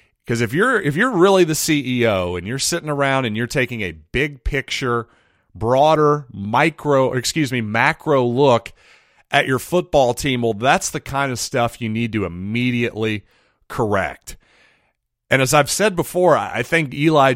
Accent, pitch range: American, 105-145 Hz